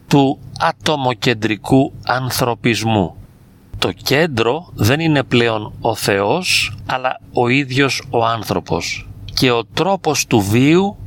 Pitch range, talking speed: 110-135 Hz, 110 wpm